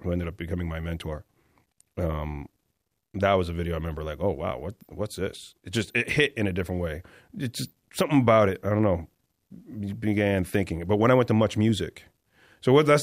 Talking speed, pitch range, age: 215 wpm, 90-110 Hz, 30-49